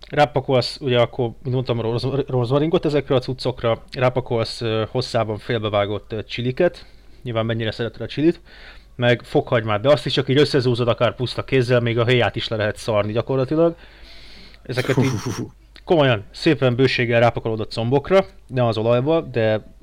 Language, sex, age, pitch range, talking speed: Hungarian, male, 30-49, 110-130 Hz, 155 wpm